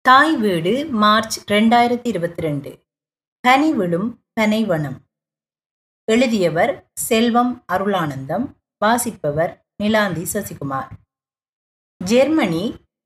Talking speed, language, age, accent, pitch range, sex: 60 wpm, Tamil, 30-49, native, 195-255 Hz, female